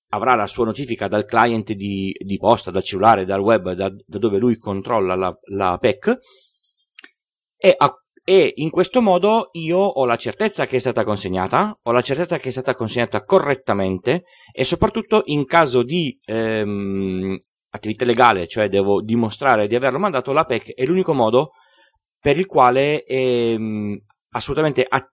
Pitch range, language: 105-155 Hz, Italian